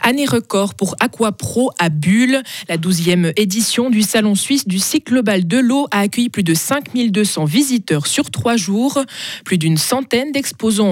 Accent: French